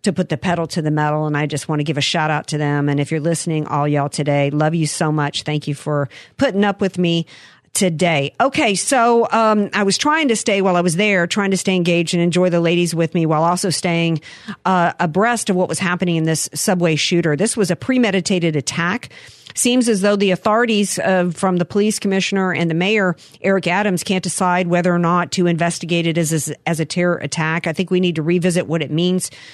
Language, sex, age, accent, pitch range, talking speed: English, female, 50-69, American, 165-200 Hz, 235 wpm